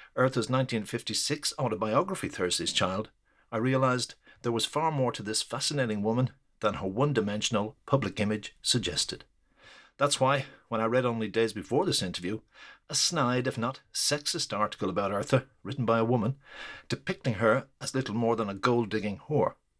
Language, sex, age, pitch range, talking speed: English, male, 60-79, 110-135 Hz, 160 wpm